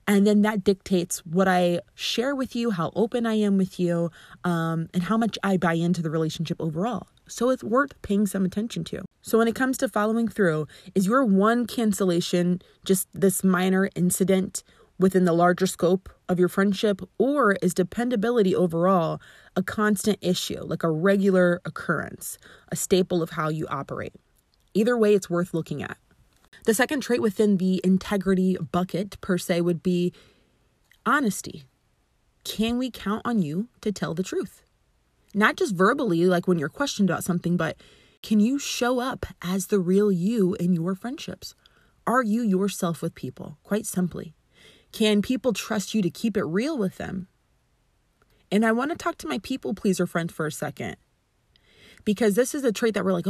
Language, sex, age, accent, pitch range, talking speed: English, female, 20-39, American, 180-220 Hz, 175 wpm